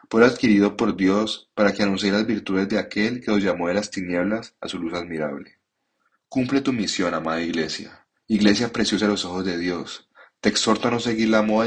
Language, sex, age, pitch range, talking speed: Spanish, male, 30-49, 95-110 Hz, 205 wpm